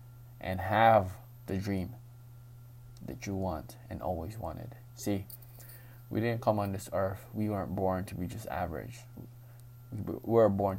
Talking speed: 150 wpm